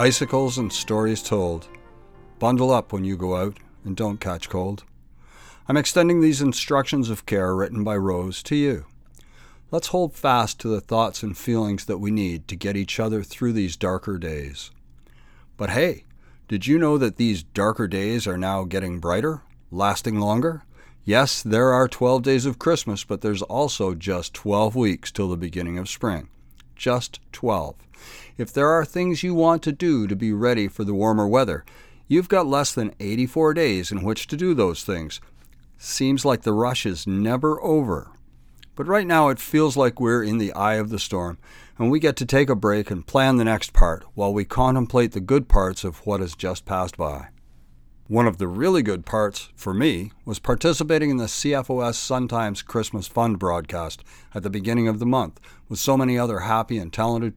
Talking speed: 190 wpm